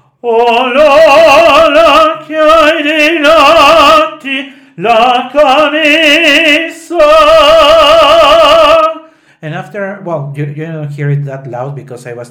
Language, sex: English, male